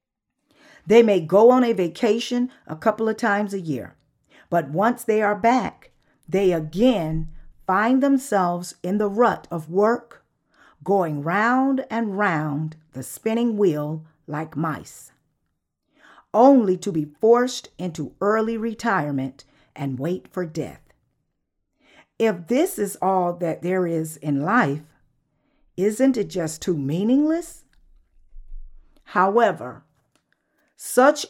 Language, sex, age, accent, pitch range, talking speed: English, female, 50-69, American, 160-230 Hz, 120 wpm